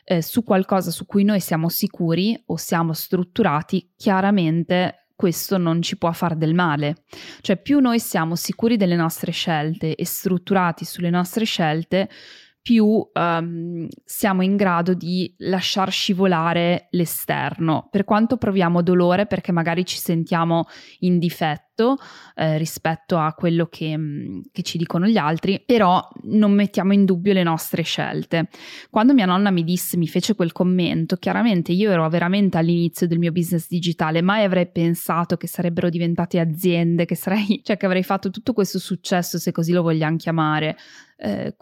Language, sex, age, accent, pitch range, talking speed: Italian, female, 20-39, native, 170-200 Hz, 155 wpm